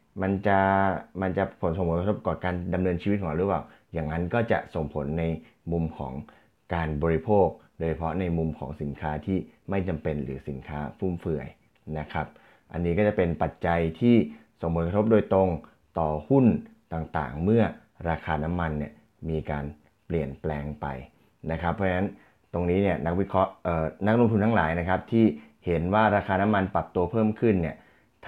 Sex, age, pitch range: male, 30-49, 80-95 Hz